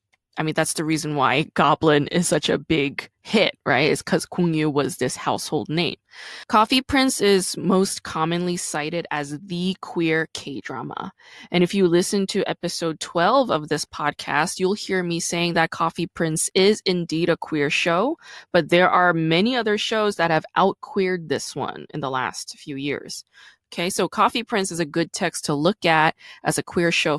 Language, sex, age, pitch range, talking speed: English, female, 20-39, 155-190 Hz, 185 wpm